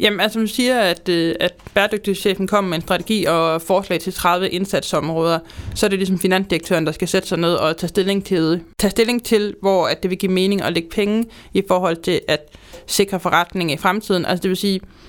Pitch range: 175-205 Hz